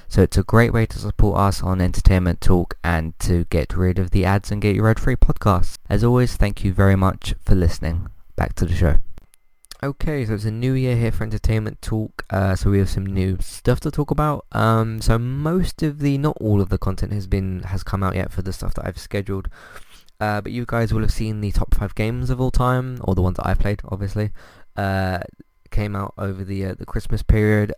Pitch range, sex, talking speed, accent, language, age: 95-110 Hz, male, 230 wpm, British, English, 20-39